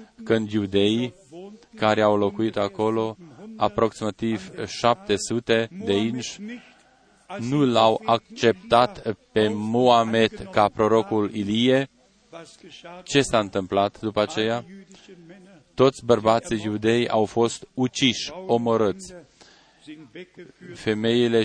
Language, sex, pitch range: Romanian, male, 110-135 Hz